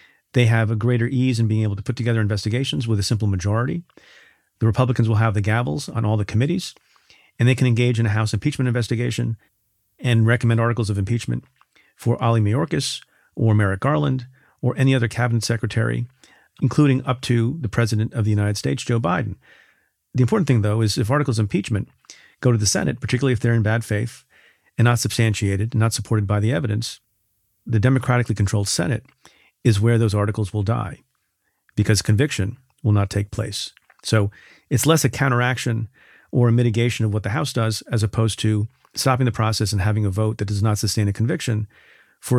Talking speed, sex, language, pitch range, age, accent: 190 wpm, male, English, 110-125 Hz, 40-59, American